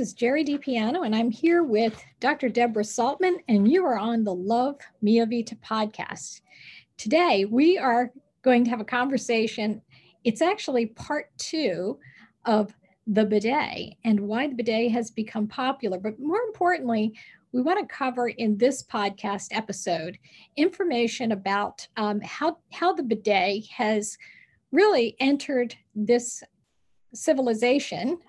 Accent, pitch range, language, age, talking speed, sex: American, 215-280 Hz, English, 50-69, 135 wpm, female